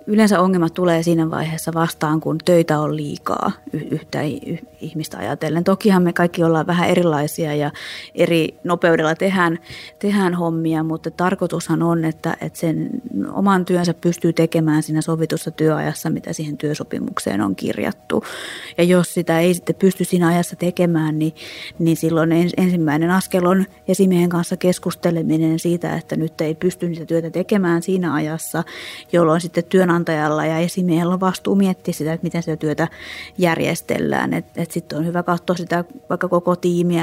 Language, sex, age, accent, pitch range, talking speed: Finnish, female, 30-49, native, 160-175 Hz, 155 wpm